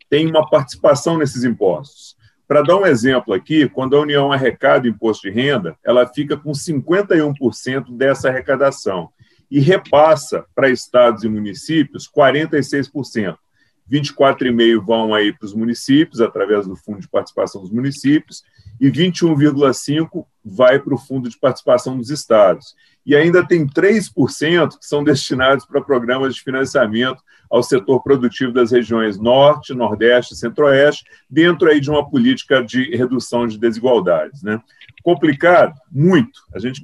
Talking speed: 140 wpm